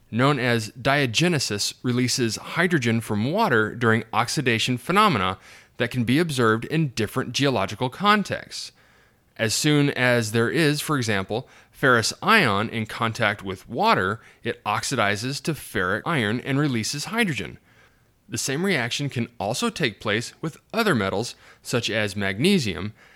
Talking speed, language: 135 wpm, English